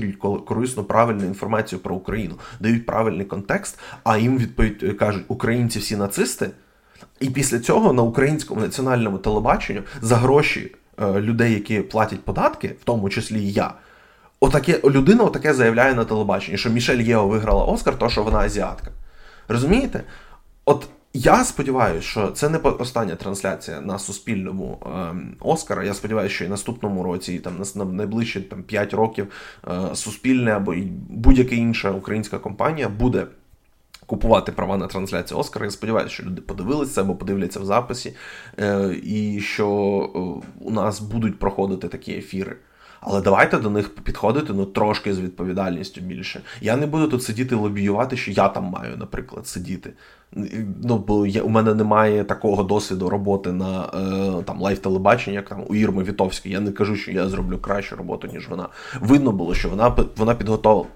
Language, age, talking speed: Ukrainian, 20-39, 155 wpm